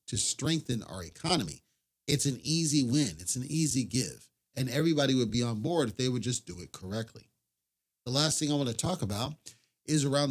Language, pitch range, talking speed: English, 110-145 Hz, 205 wpm